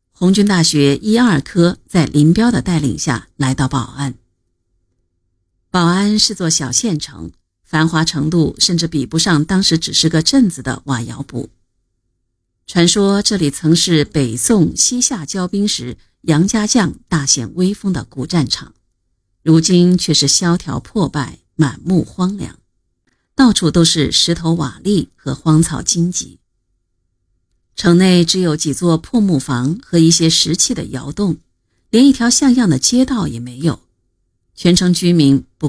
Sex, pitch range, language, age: female, 130-185 Hz, Chinese, 50-69